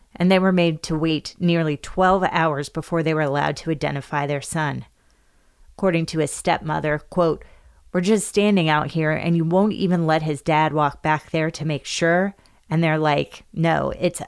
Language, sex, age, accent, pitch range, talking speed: English, female, 30-49, American, 150-175 Hz, 190 wpm